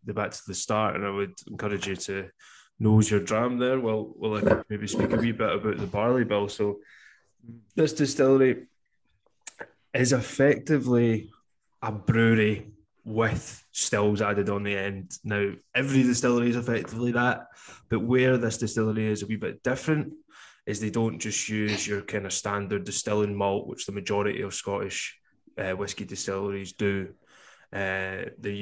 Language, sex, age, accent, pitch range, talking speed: English, male, 20-39, British, 100-115 Hz, 160 wpm